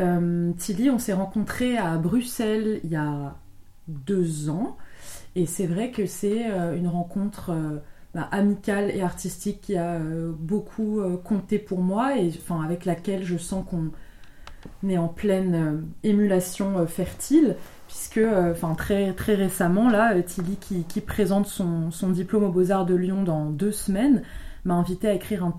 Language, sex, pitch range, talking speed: French, female, 170-205 Hz, 170 wpm